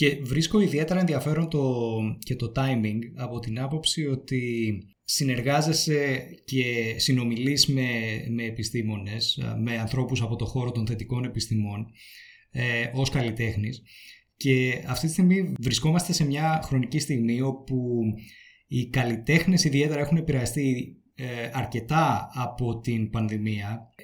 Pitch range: 115-145 Hz